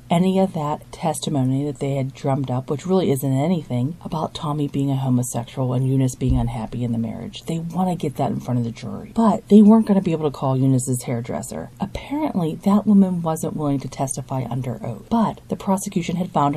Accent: American